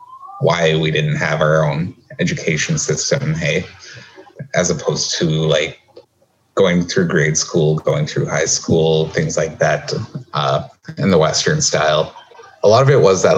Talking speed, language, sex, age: 155 wpm, English, male, 30-49